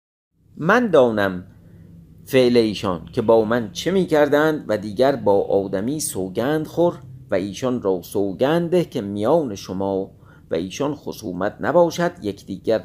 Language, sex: Persian, male